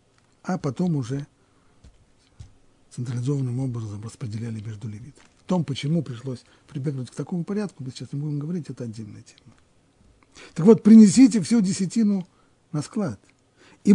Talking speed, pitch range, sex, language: 140 wpm, 120-160 Hz, male, Russian